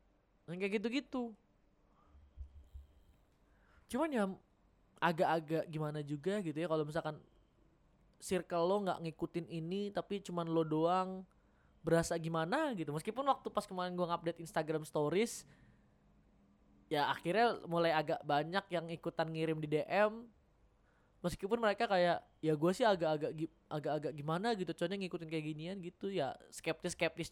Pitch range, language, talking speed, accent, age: 150-190 Hz, Indonesian, 130 wpm, native, 20-39